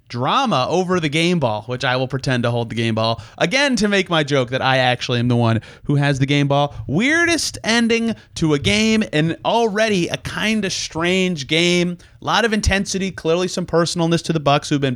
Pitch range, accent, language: 125-185 Hz, American, English